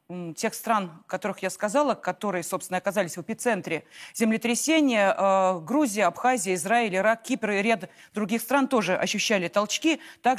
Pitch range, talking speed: 195-255 Hz, 145 wpm